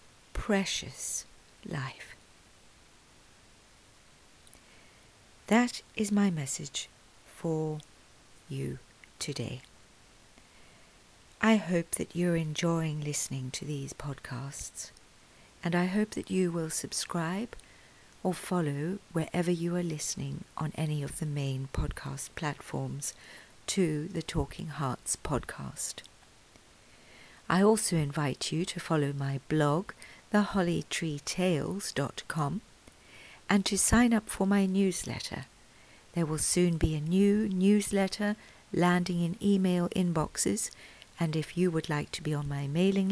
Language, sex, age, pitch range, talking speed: English, female, 50-69, 145-185 Hz, 110 wpm